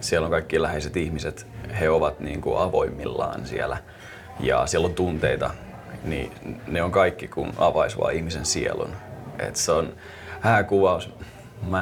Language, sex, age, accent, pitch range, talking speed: Finnish, male, 30-49, native, 85-110 Hz, 140 wpm